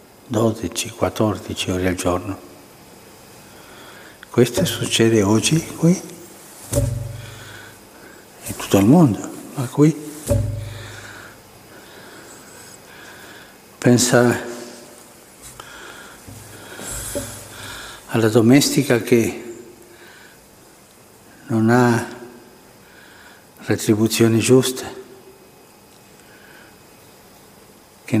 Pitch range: 110-125 Hz